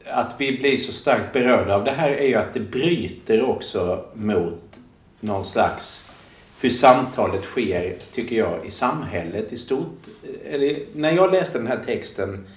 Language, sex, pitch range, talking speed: Swedish, male, 105-130 Hz, 160 wpm